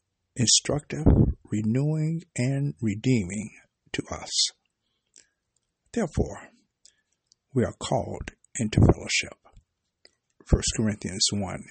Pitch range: 105-135 Hz